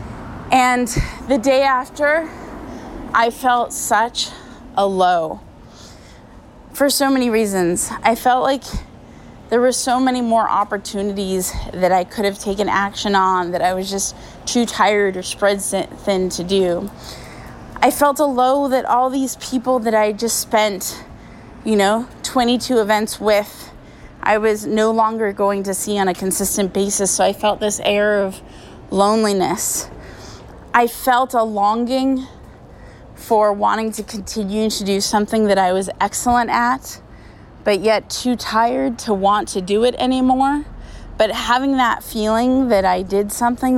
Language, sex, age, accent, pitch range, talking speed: English, female, 20-39, American, 200-250 Hz, 150 wpm